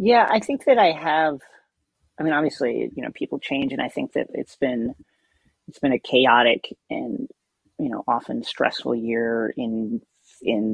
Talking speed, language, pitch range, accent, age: 175 wpm, English, 115-190 Hz, American, 30-49